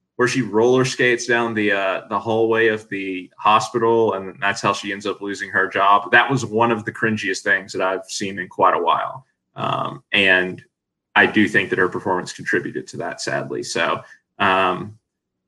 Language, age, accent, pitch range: English, 20-39, American, 95-125 Hz